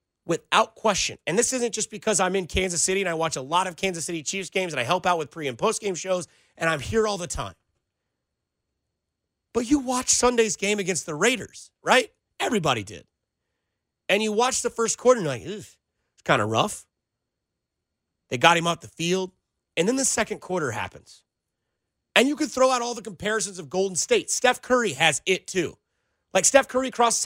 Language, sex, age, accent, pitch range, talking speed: English, male, 30-49, American, 175-230 Hz, 205 wpm